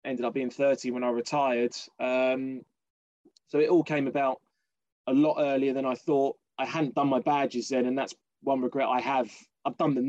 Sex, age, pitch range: male, 20-39, 125-145 Hz